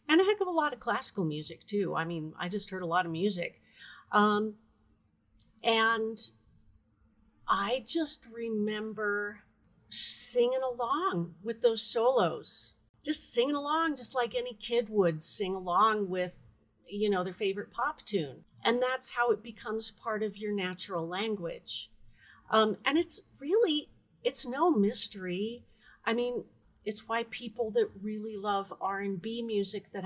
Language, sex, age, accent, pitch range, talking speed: English, female, 40-59, American, 190-240 Hz, 150 wpm